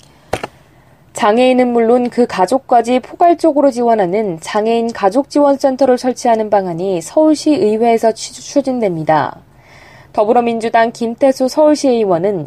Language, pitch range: Korean, 210-260 Hz